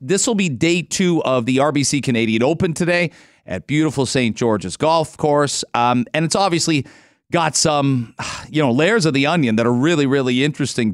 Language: English